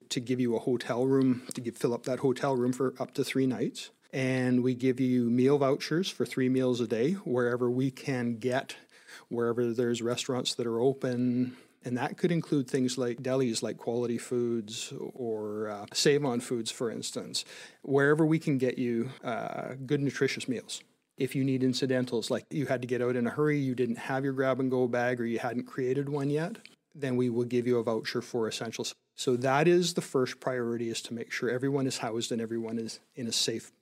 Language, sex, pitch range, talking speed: English, male, 120-135 Hz, 205 wpm